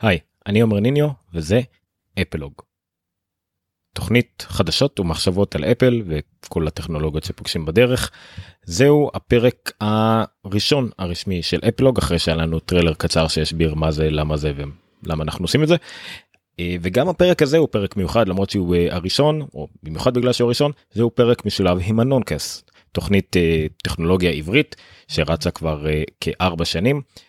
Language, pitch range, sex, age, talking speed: Hebrew, 85-115 Hz, male, 30-49, 135 wpm